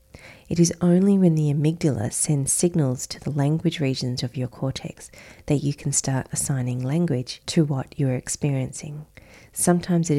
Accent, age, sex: Australian, 30-49, female